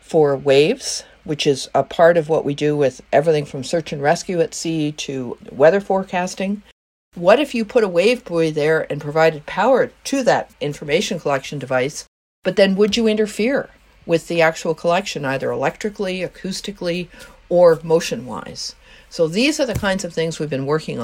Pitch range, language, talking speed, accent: 150-190 Hz, English, 175 wpm, American